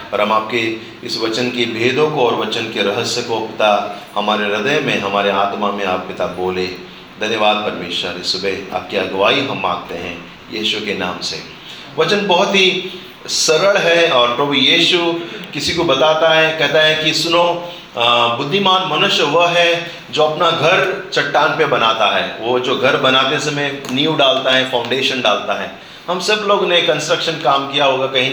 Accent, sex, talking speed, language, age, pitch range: native, male, 165 wpm, Hindi, 30-49, 120-170 Hz